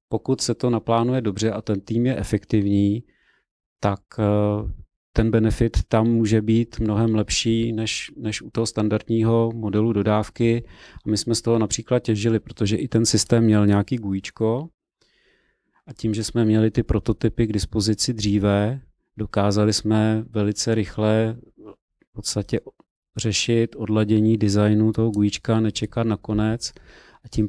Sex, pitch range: male, 105-115 Hz